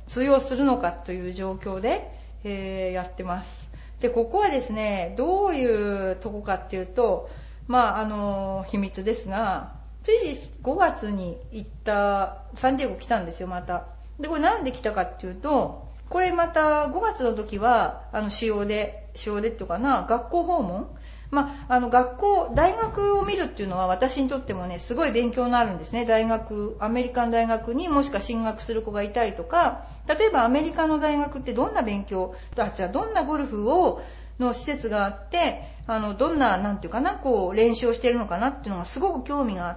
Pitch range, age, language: 205-295 Hz, 40-59, Japanese